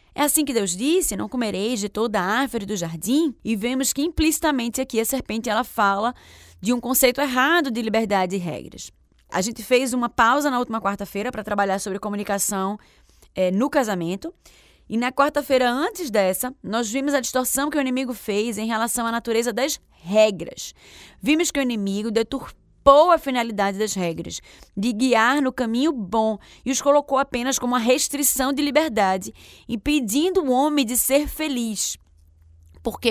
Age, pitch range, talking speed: 10-29, 210-275 Hz, 165 wpm